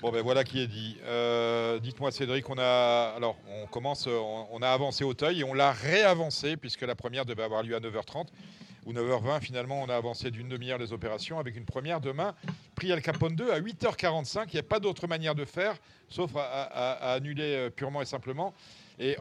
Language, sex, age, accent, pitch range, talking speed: French, male, 50-69, French, 125-160 Hz, 210 wpm